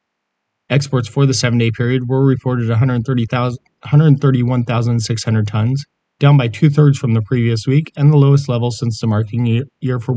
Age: 30-49